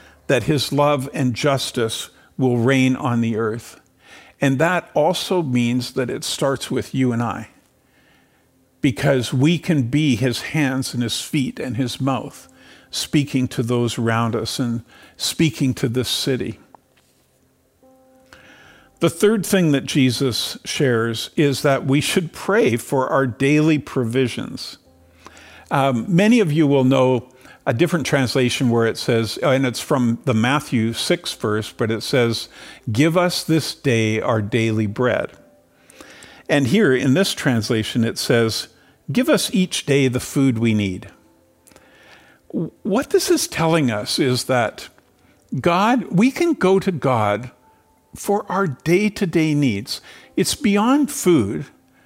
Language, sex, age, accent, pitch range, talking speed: English, male, 50-69, American, 120-160 Hz, 140 wpm